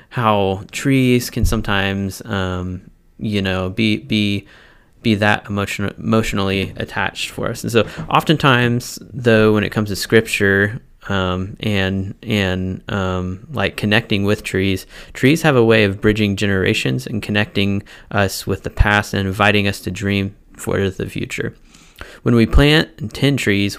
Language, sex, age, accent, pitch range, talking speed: English, male, 20-39, American, 95-115 Hz, 150 wpm